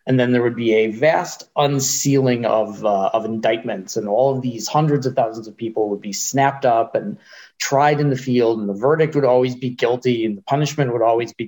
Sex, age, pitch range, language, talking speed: male, 30-49, 120-150 Hz, English, 225 wpm